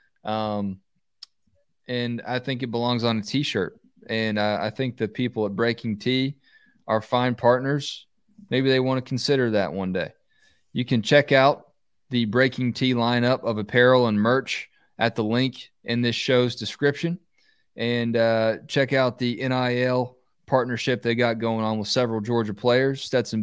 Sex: male